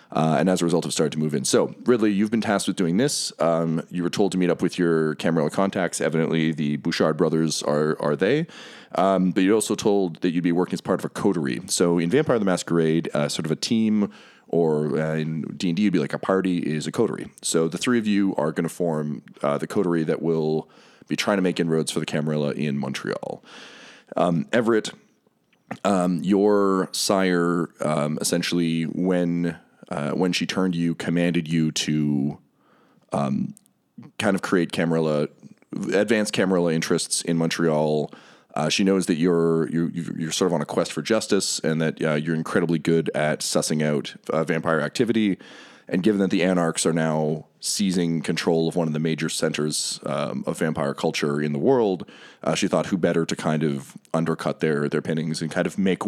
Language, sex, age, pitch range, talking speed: English, male, 30-49, 80-90 Hz, 195 wpm